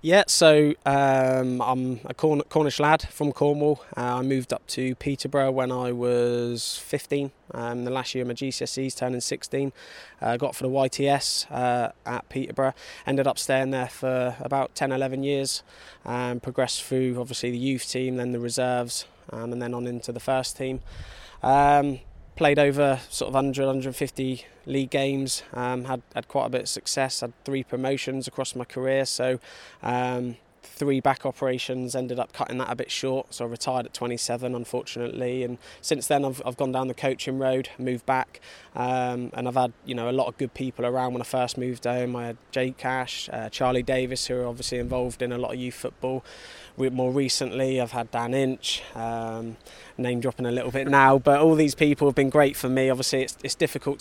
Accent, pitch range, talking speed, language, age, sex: British, 125-135 Hz, 190 wpm, English, 20-39, male